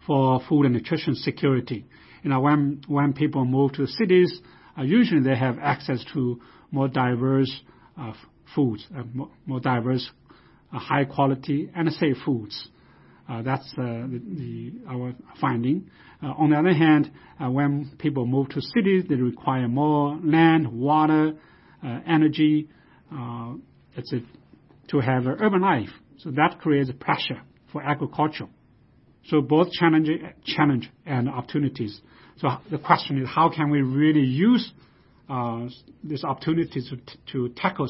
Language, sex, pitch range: Chinese, male, 125-150 Hz